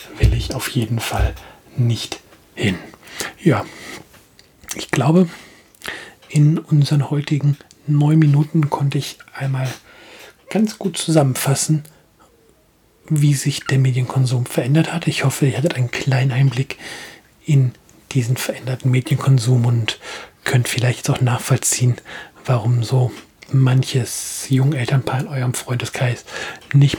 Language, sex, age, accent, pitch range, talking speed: German, male, 40-59, German, 120-140 Hz, 115 wpm